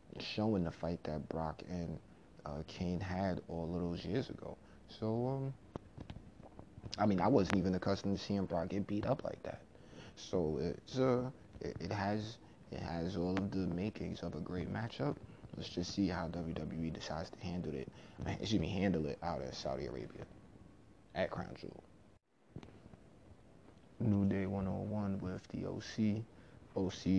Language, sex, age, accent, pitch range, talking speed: English, male, 20-39, American, 90-105 Hz, 160 wpm